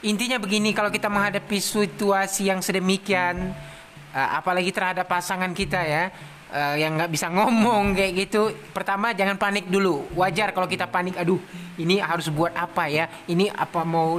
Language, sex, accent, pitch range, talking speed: Indonesian, male, native, 175-220 Hz, 150 wpm